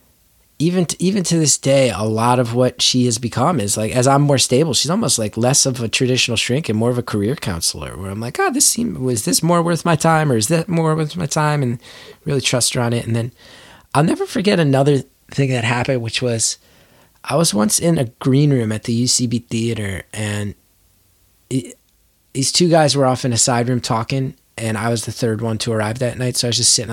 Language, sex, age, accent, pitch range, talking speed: English, male, 20-39, American, 110-140 Hz, 235 wpm